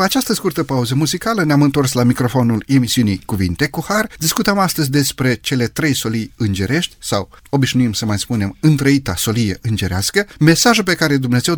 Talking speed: 165 wpm